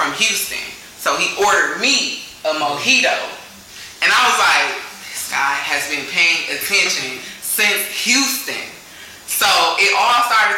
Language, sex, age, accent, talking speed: English, female, 20-39, American, 135 wpm